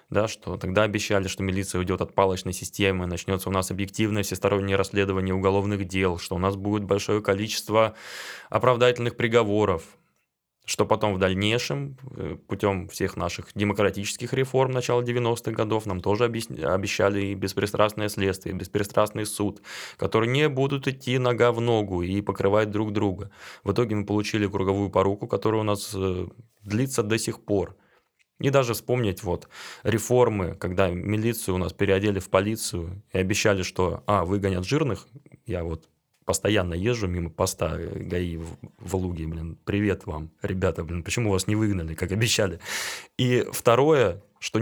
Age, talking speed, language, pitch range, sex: 20-39, 150 wpm, Russian, 95-110 Hz, male